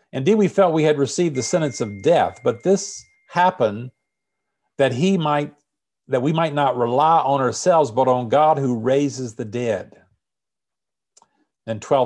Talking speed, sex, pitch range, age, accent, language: 155 wpm, male, 115-155 Hz, 50-69, American, English